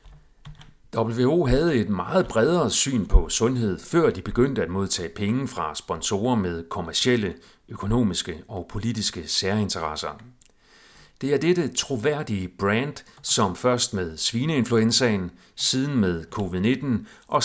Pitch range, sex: 100-130 Hz, male